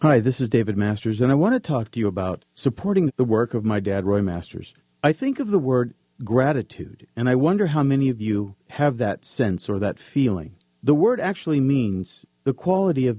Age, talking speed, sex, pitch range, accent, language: 50-69, 215 wpm, male, 110-150 Hz, American, English